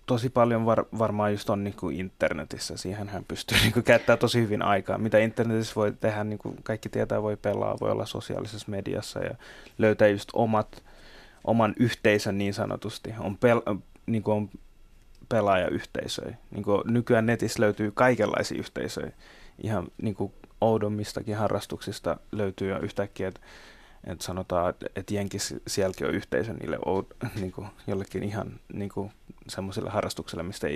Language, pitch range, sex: Finnish, 100-115 Hz, male